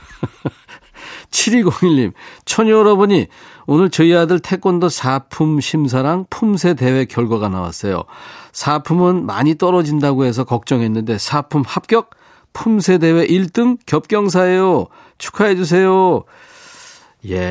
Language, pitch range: Korean, 125-185 Hz